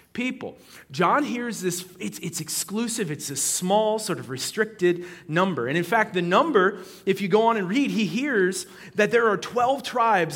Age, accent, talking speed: 30-49, American, 185 wpm